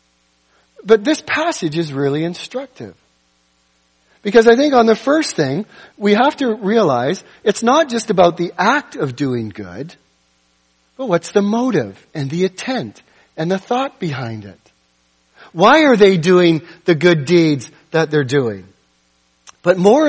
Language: English